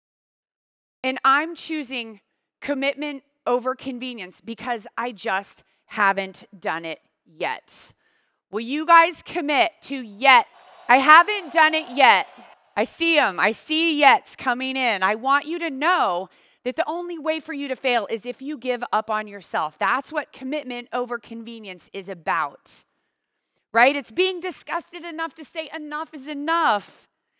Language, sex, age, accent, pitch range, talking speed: English, female, 30-49, American, 225-305 Hz, 150 wpm